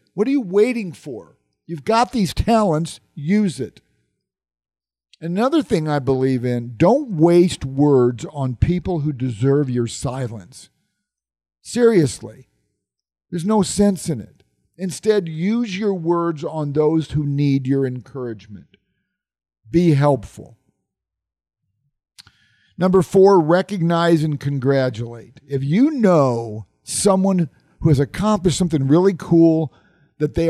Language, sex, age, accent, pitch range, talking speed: English, male, 50-69, American, 130-185 Hz, 120 wpm